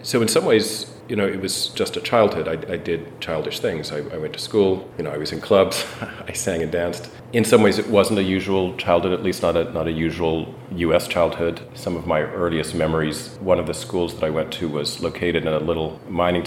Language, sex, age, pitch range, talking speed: English, male, 40-59, 80-100 Hz, 240 wpm